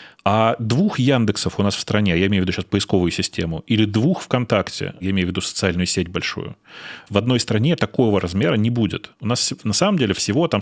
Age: 30-49